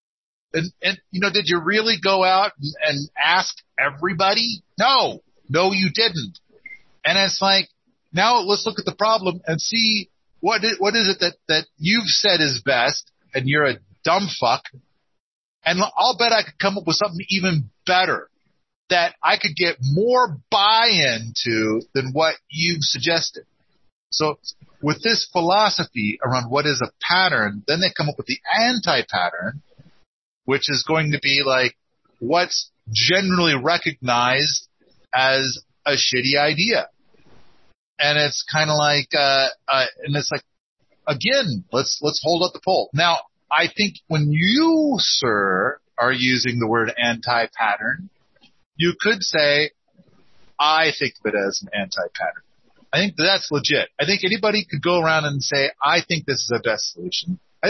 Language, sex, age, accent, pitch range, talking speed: English, male, 40-59, American, 140-195 Hz, 160 wpm